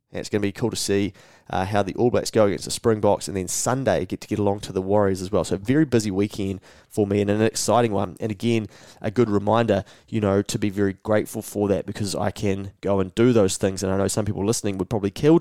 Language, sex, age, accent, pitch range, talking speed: English, male, 20-39, Australian, 100-115 Hz, 270 wpm